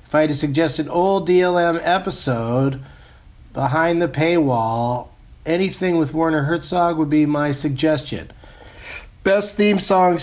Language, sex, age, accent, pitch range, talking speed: English, male, 40-59, American, 110-155 Hz, 135 wpm